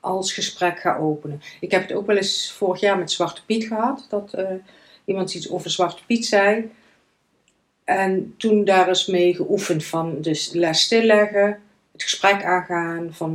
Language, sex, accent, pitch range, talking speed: Dutch, female, Dutch, 175-205 Hz, 170 wpm